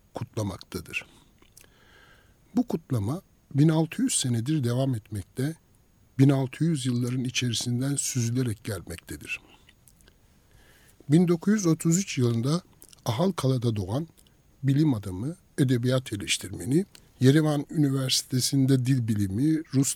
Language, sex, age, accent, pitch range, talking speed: Turkish, male, 60-79, native, 115-155 Hz, 80 wpm